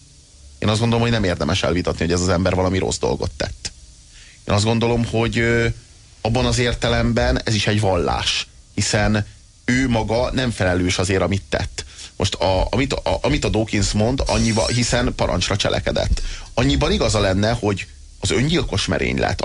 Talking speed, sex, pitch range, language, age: 165 wpm, male, 90-115 Hz, Hungarian, 30-49